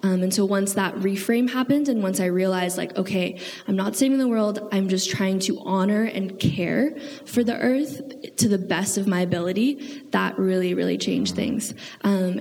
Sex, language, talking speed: female, English, 195 wpm